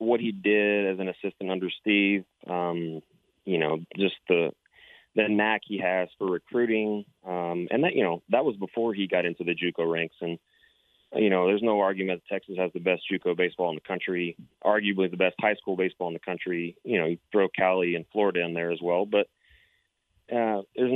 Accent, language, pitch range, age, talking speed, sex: American, English, 90-105 Hz, 30-49, 205 wpm, male